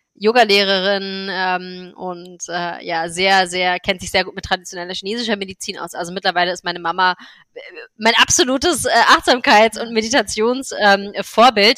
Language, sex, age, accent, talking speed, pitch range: German, female, 20-39, German, 130 wpm, 180-215 Hz